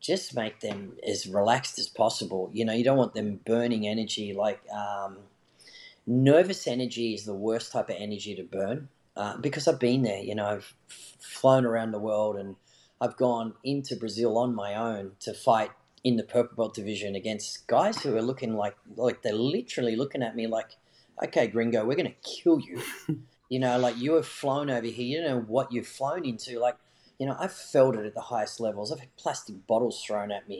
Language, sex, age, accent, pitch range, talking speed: English, male, 30-49, Australian, 110-135 Hz, 210 wpm